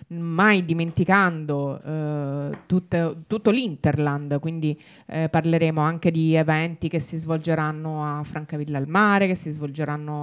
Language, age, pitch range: Italian, 30-49, 150-180 Hz